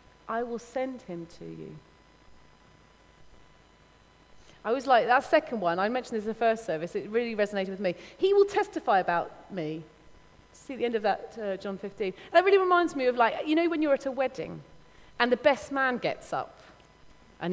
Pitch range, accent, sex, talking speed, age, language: 190-275 Hz, British, female, 200 wpm, 30-49, English